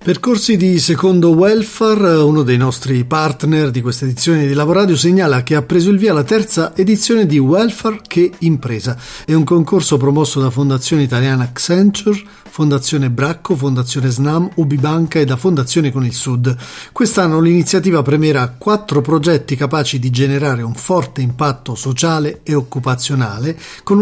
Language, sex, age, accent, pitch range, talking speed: Italian, male, 40-59, native, 130-185 Hz, 150 wpm